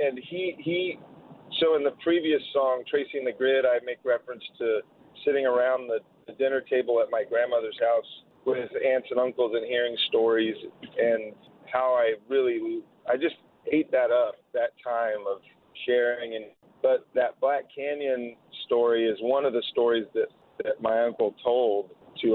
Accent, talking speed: American, 165 wpm